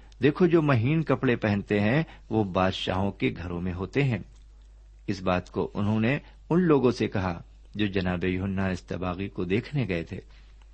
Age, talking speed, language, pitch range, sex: 50-69, 160 wpm, Urdu, 95-135 Hz, male